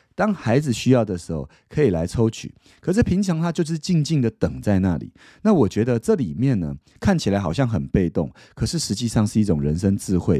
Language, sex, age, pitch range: Chinese, male, 30-49, 95-130 Hz